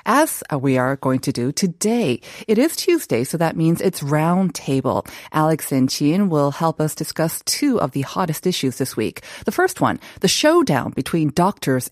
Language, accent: Korean, American